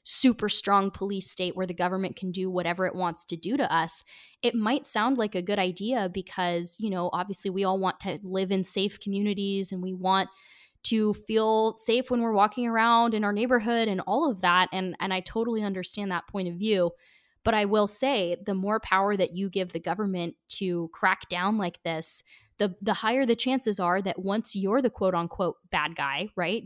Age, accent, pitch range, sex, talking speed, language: 10-29, American, 180-225 Hz, female, 210 wpm, English